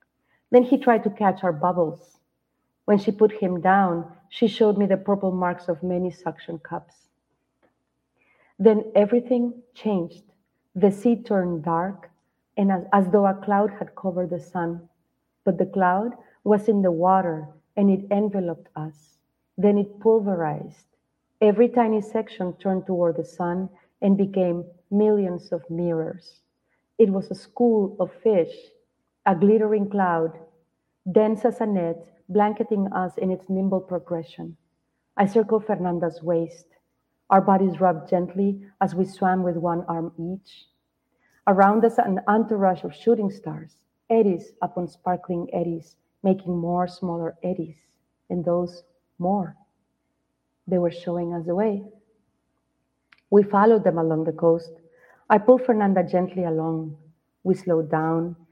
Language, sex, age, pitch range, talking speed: English, female, 40-59, 170-205 Hz, 140 wpm